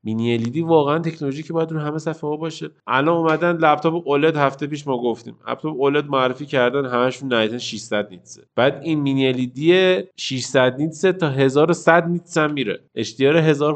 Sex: male